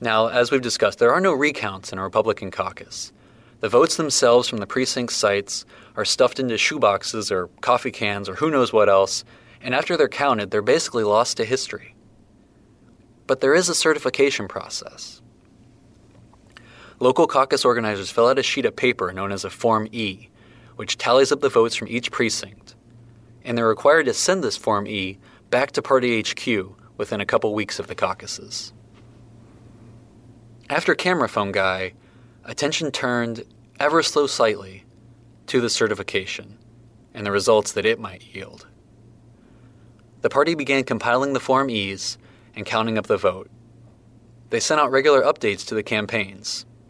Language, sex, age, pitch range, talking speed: English, male, 20-39, 110-125 Hz, 160 wpm